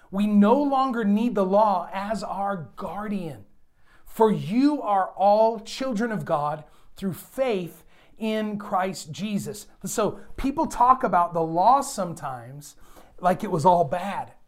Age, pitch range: 30-49, 185-245 Hz